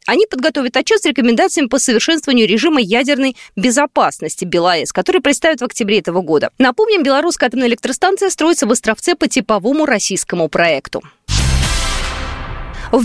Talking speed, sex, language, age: 135 wpm, female, Russian, 20-39